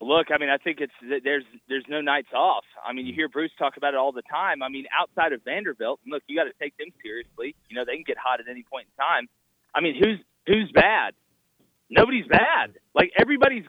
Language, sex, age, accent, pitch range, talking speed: English, male, 30-49, American, 145-210 Hz, 235 wpm